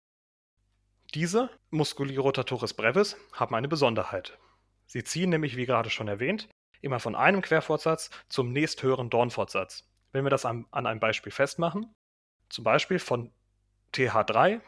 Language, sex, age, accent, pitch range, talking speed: German, male, 30-49, German, 115-165 Hz, 135 wpm